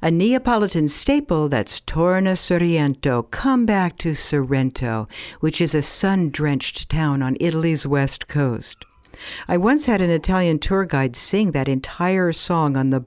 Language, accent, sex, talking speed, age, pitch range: English, American, female, 145 wpm, 60-79, 145-205 Hz